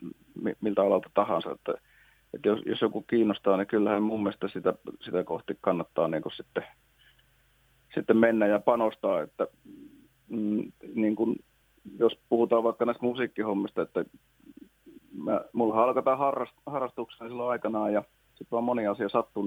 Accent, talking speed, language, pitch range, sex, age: native, 135 wpm, Finnish, 105-120 Hz, male, 30-49